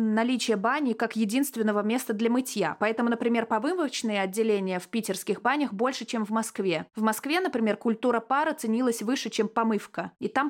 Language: Russian